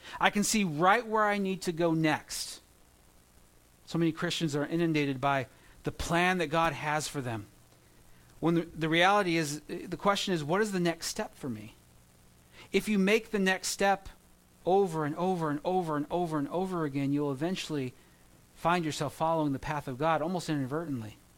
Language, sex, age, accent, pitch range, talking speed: English, male, 40-59, American, 140-190 Hz, 180 wpm